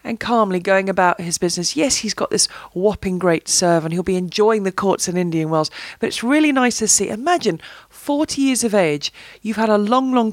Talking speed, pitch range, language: 220 wpm, 175-235 Hz, English